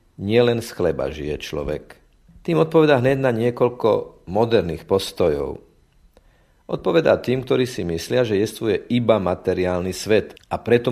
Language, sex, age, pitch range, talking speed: Slovak, male, 50-69, 90-115 Hz, 130 wpm